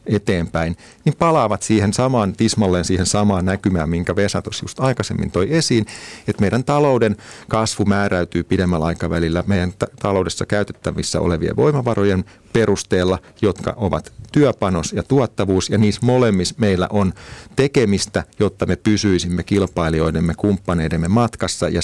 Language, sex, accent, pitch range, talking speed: Finnish, male, native, 85-110 Hz, 125 wpm